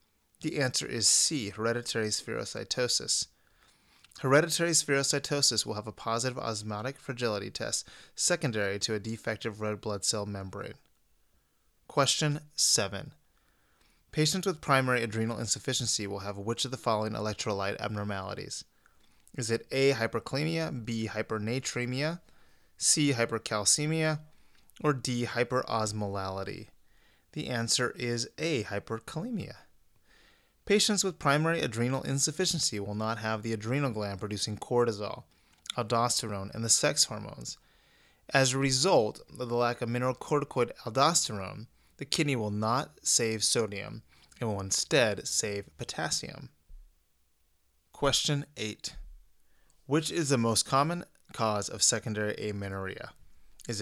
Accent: American